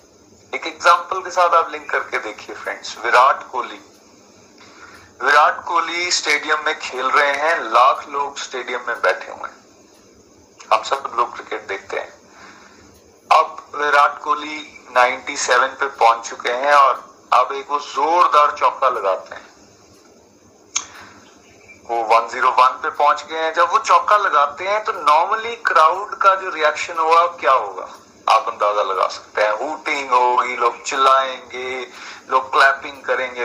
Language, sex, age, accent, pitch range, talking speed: Hindi, male, 40-59, native, 130-175 Hz, 140 wpm